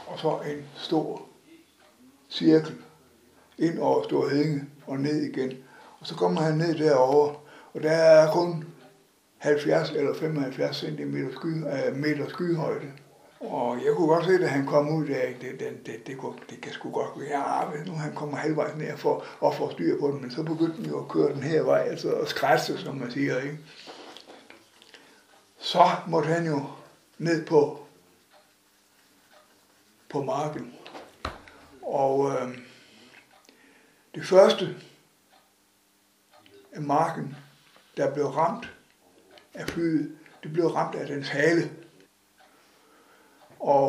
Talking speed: 140 wpm